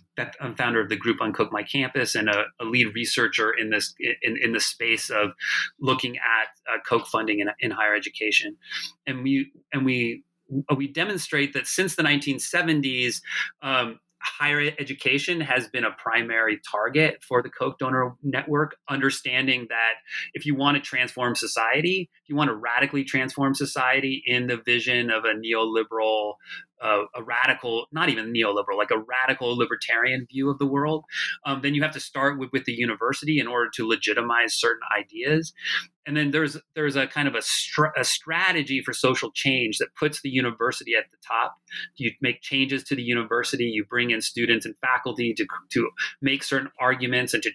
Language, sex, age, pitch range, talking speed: English, male, 30-49, 120-145 Hz, 180 wpm